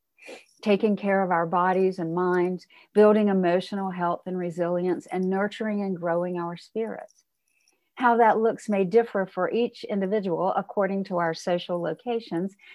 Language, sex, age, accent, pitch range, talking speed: English, female, 50-69, American, 175-210 Hz, 145 wpm